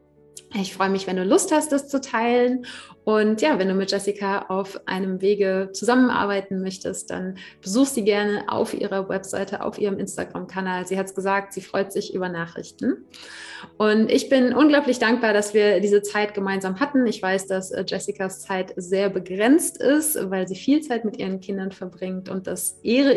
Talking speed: 180 wpm